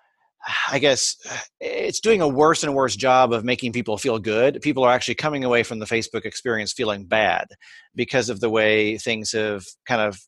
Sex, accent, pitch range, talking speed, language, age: male, American, 110-135 Hz, 195 wpm, English, 30-49